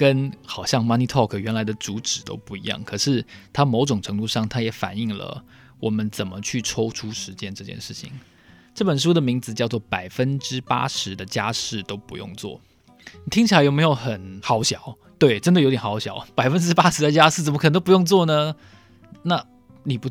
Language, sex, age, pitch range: Chinese, male, 20-39, 105-140 Hz